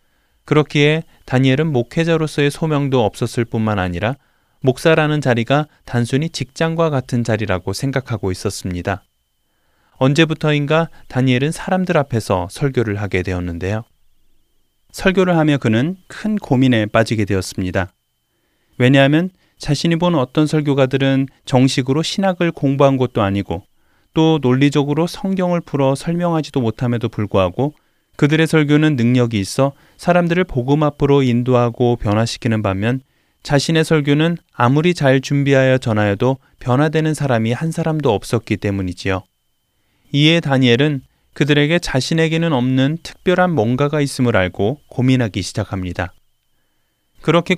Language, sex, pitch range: Korean, male, 110-155 Hz